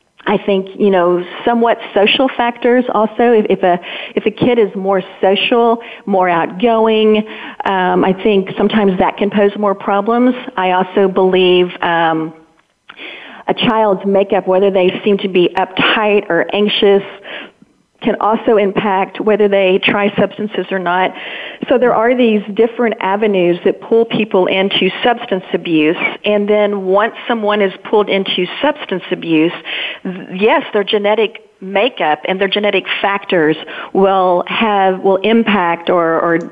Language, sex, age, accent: English, female, 40-59, American